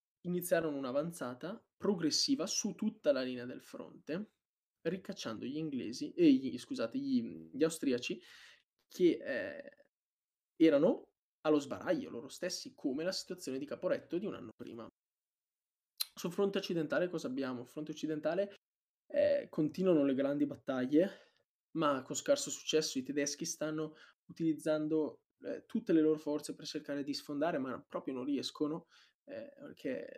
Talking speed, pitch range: 135 wpm, 145-195 Hz